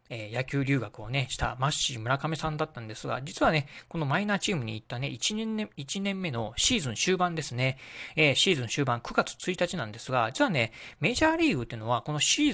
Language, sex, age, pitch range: Japanese, male, 40-59, 120-170 Hz